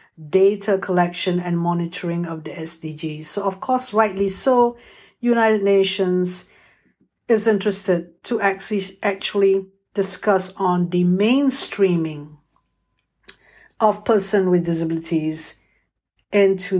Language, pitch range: English, 175-225 Hz